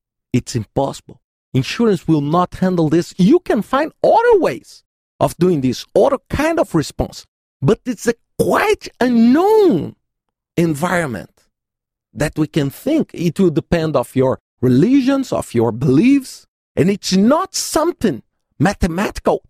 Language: English